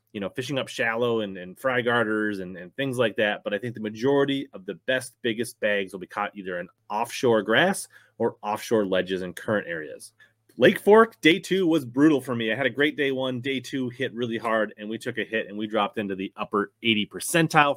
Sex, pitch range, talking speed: male, 110-145 Hz, 235 wpm